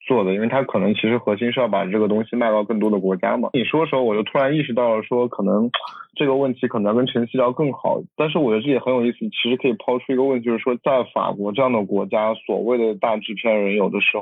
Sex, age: male, 20-39